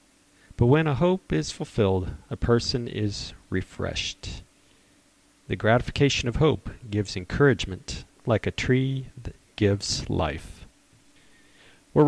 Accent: American